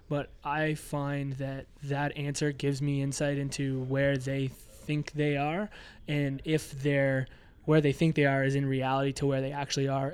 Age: 20-39